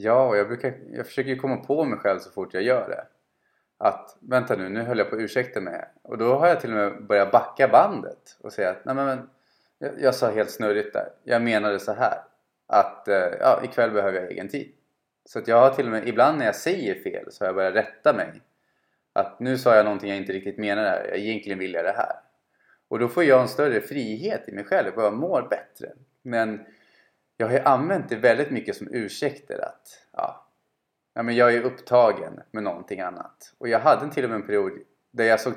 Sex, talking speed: male, 230 wpm